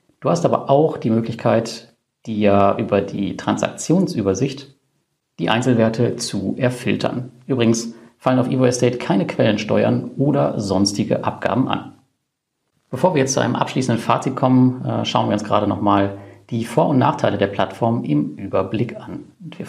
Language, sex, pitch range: German, male, 105-130 Hz